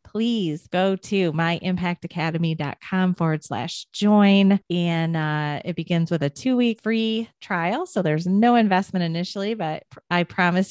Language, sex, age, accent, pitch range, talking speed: English, female, 30-49, American, 160-195 Hz, 140 wpm